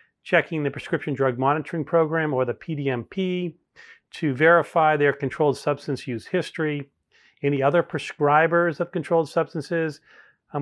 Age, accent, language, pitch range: 40-59, American, English, 135-170 Hz